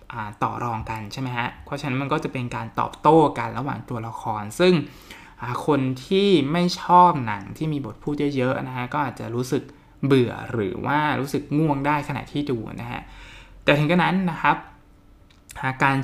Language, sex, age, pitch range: Thai, male, 20-39, 120-145 Hz